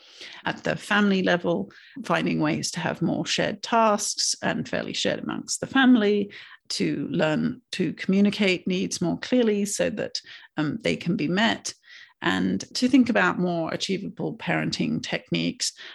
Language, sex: English, female